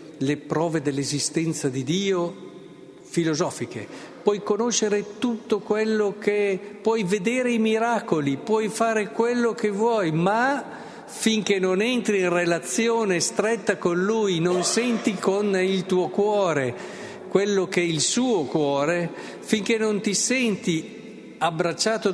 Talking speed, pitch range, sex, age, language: 125 wpm, 145-210 Hz, male, 50-69, Italian